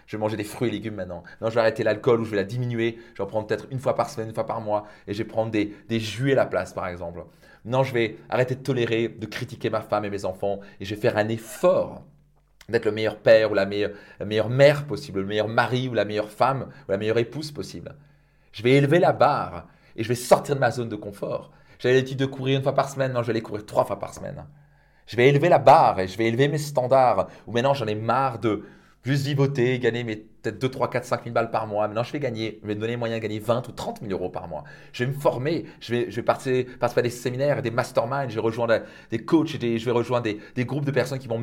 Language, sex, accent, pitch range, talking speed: French, male, French, 110-135 Hz, 280 wpm